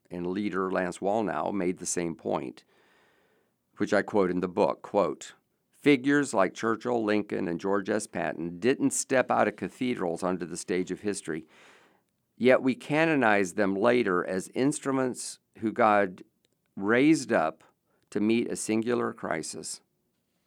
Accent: American